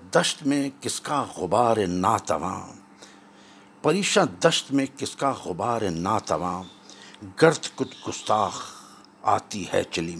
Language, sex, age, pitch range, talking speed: Urdu, male, 60-79, 100-160 Hz, 110 wpm